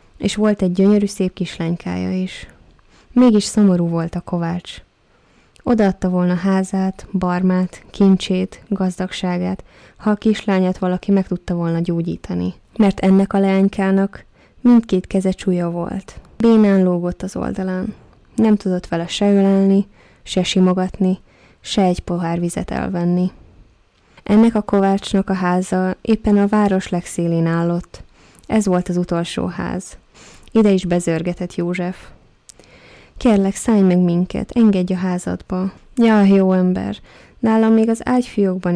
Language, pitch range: Hungarian, 175-205 Hz